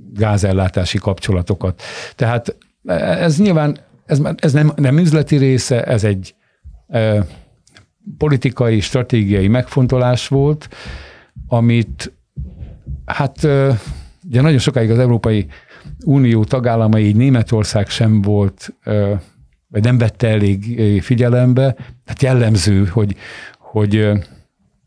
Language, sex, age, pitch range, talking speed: Hungarian, male, 60-79, 105-135 Hz, 100 wpm